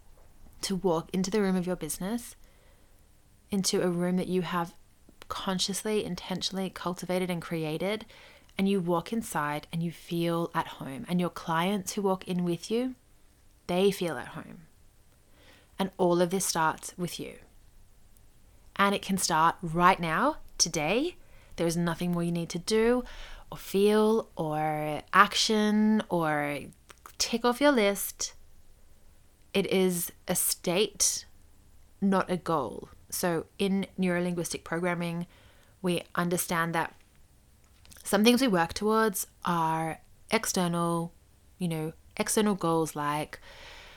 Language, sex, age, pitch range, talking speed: English, female, 20-39, 160-200 Hz, 130 wpm